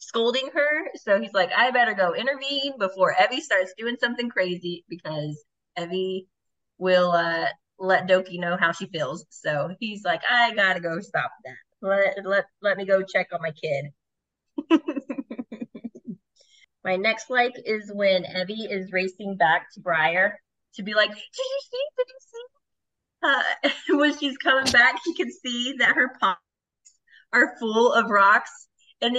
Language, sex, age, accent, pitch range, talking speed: English, female, 20-39, American, 200-295 Hz, 160 wpm